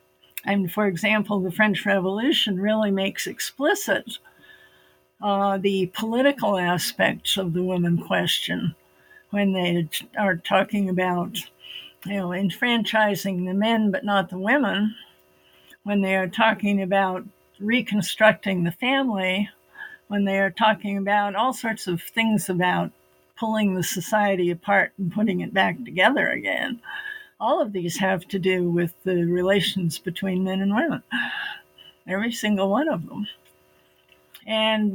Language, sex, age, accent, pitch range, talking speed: English, female, 60-79, American, 175-220 Hz, 135 wpm